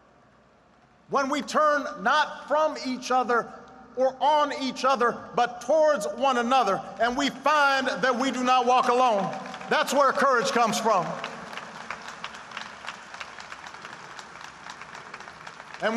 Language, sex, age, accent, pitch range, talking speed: English, male, 50-69, American, 230-285 Hz, 115 wpm